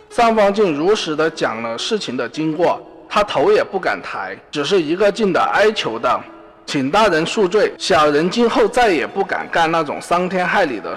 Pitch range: 155-220 Hz